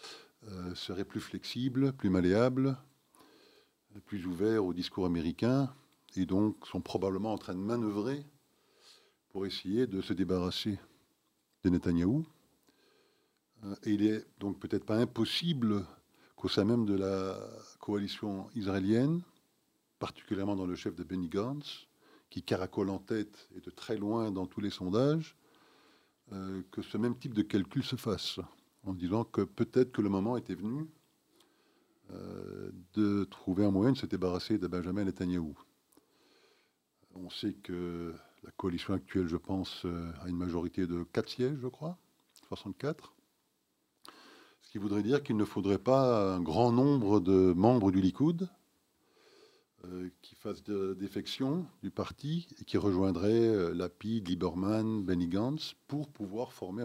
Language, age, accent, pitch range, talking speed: French, 50-69, French, 95-125 Hz, 145 wpm